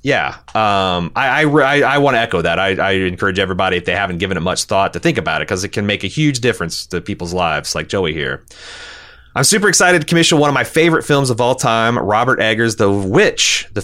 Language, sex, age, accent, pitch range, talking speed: English, male, 30-49, American, 95-130 Hz, 240 wpm